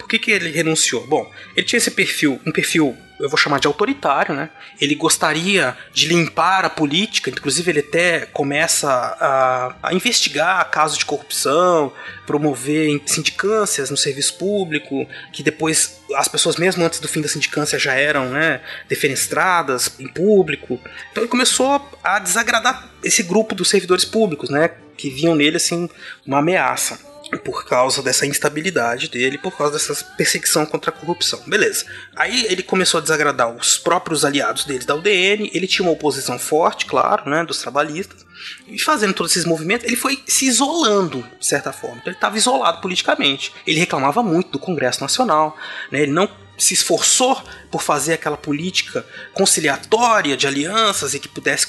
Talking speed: 165 wpm